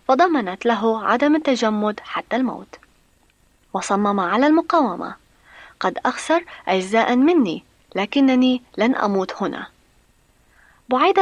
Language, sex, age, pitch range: Arabic, female, 20-39, 210-300 Hz